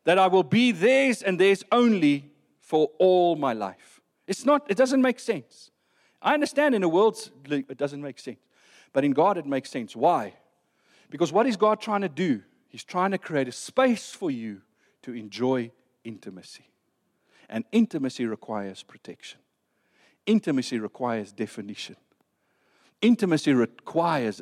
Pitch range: 140-230 Hz